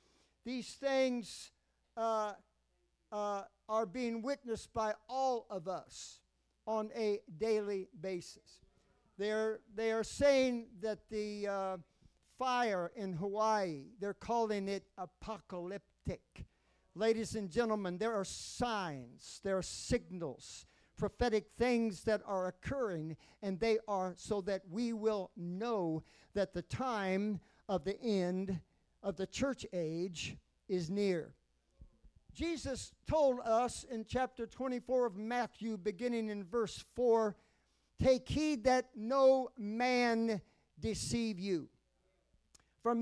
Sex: male